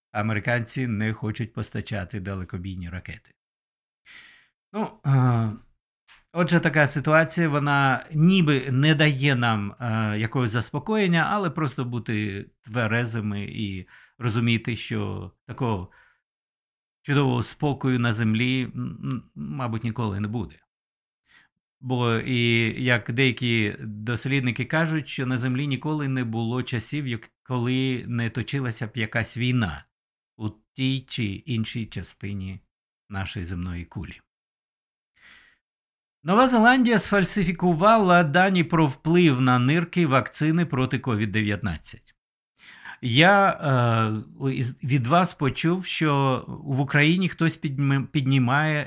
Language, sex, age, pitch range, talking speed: Ukrainian, male, 50-69, 115-150 Hz, 100 wpm